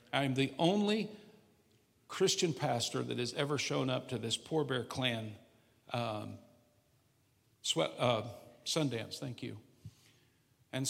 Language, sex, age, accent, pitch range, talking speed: English, male, 50-69, American, 120-145 Hz, 115 wpm